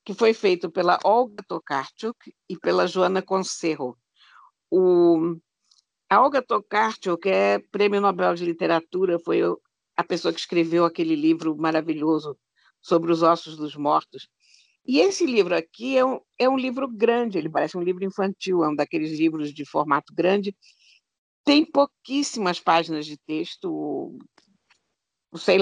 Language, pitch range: Portuguese, 165-220 Hz